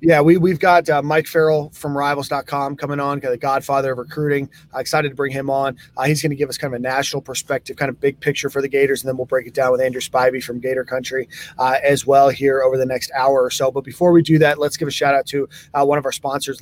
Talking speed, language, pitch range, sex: 280 wpm, English, 135-155 Hz, male